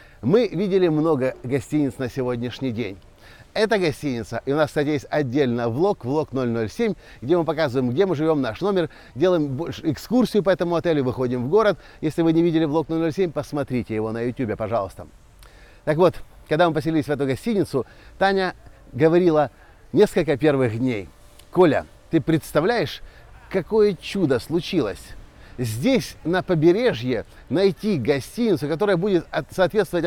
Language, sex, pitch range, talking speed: Russian, male, 125-185 Hz, 145 wpm